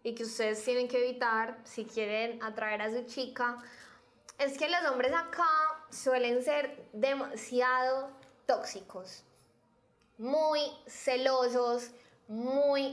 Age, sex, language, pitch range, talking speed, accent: 10-29, female, English, 230-260 Hz, 110 wpm, Colombian